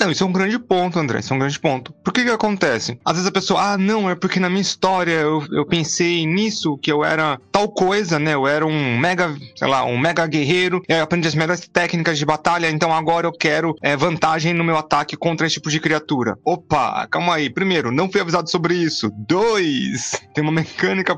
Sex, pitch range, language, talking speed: male, 145-185 Hz, Portuguese, 225 wpm